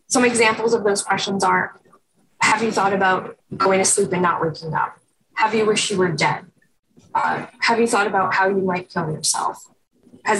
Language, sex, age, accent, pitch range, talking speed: English, female, 10-29, American, 175-205 Hz, 195 wpm